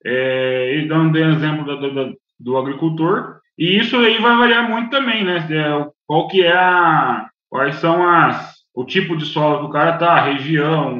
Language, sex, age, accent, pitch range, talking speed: Portuguese, male, 20-39, Brazilian, 140-185 Hz, 180 wpm